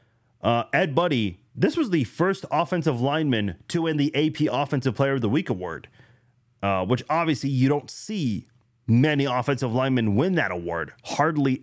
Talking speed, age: 165 wpm, 30-49